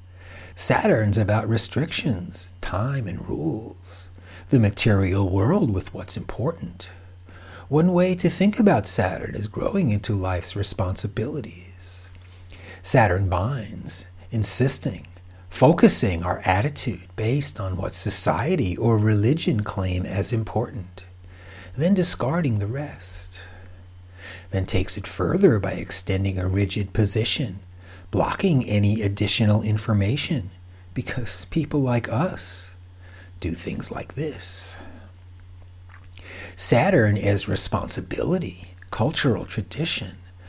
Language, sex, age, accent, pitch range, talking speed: English, male, 60-79, American, 90-115 Hz, 100 wpm